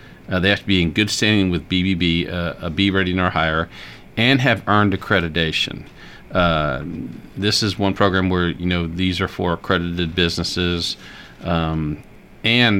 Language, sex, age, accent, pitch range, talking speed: English, male, 40-59, American, 85-100 Hz, 165 wpm